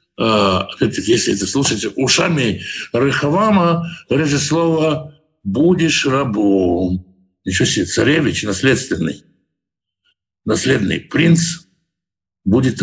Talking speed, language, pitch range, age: 90 wpm, Russian, 135-170 Hz, 60-79